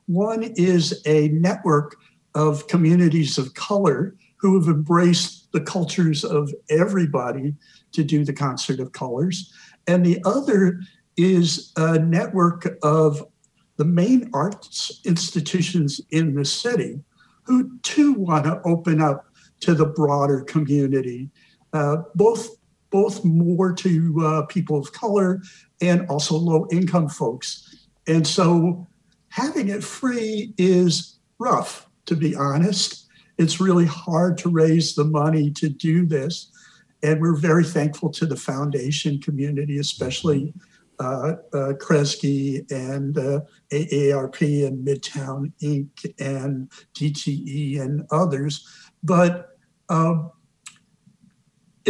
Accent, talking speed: American, 120 wpm